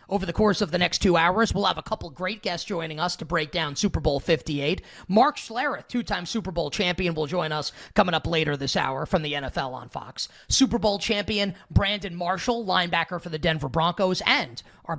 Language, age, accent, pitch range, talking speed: English, 30-49, American, 160-205 Hz, 210 wpm